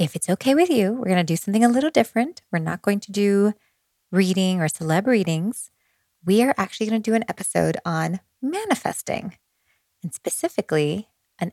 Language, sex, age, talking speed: English, female, 20-39, 180 wpm